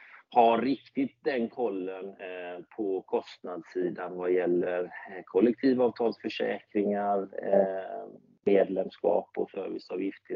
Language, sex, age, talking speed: Swedish, male, 30-49, 70 wpm